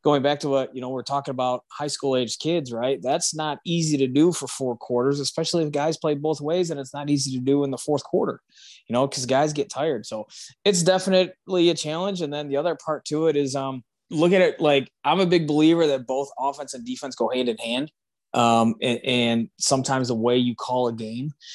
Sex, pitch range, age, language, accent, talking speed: male, 125-150 Hz, 20-39, English, American, 235 wpm